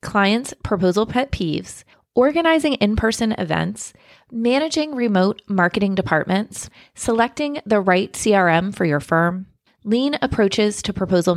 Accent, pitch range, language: American, 185-235 Hz, English